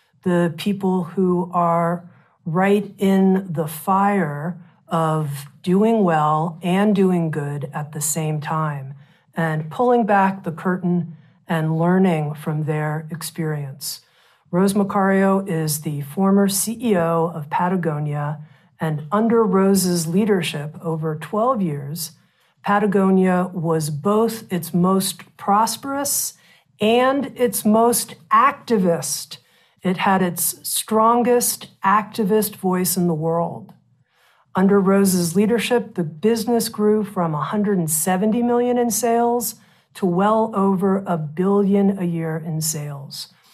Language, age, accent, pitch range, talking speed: English, 50-69, American, 160-210 Hz, 115 wpm